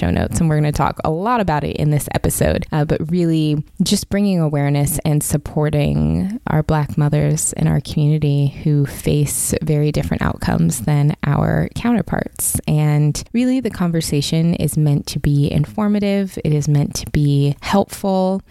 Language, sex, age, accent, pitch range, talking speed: English, female, 20-39, American, 140-165 Hz, 165 wpm